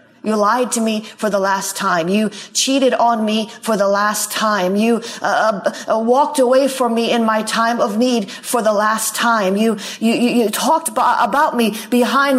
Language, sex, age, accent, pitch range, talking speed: English, female, 40-59, American, 190-240 Hz, 195 wpm